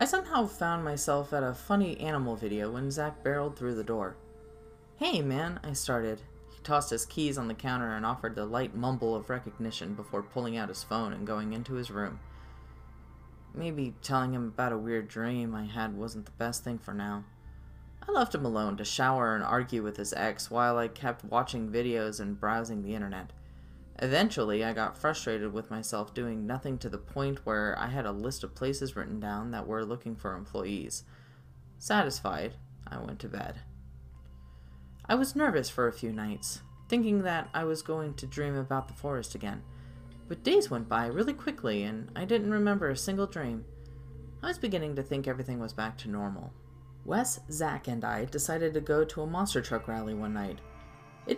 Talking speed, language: 190 wpm, English